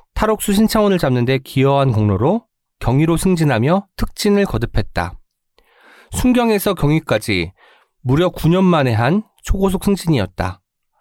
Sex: male